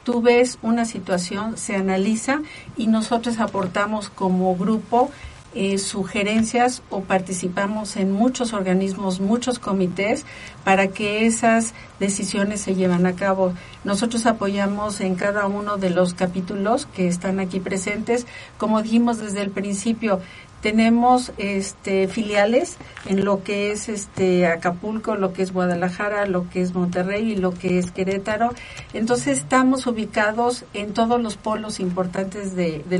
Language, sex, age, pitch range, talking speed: Spanish, female, 50-69, 190-225 Hz, 140 wpm